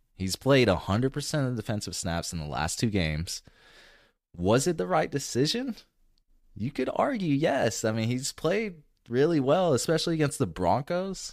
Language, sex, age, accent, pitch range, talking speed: English, male, 20-39, American, 85-120 Hz, 160 wpm